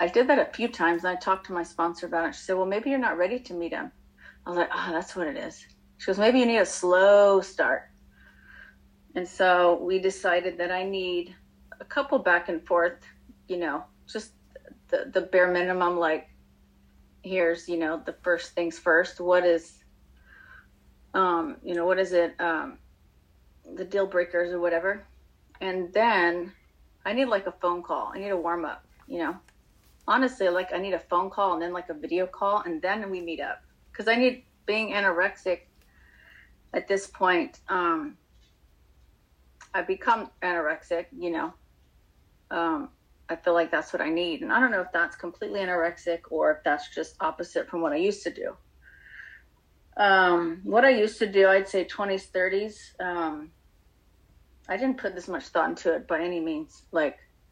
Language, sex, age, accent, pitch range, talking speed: English, female, 30-49, American, 170-200 Hz, 185 wpm